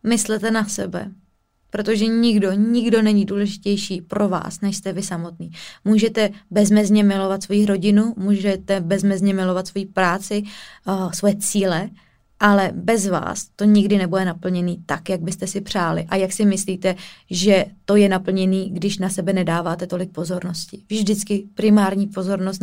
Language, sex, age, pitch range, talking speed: Czech, female, 20-39, 185-205 Hz, 150 wpm